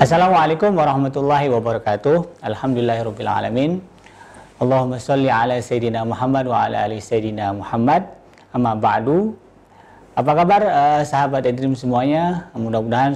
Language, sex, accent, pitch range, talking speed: Indonesian, male, native, 115-150 Hz, 110 wpm